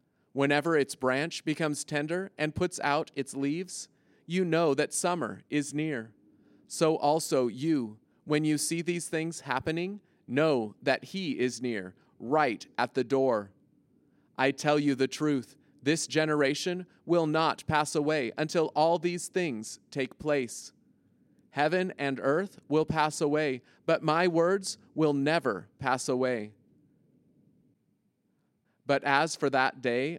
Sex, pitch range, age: male, 140-170 Hz, 30-49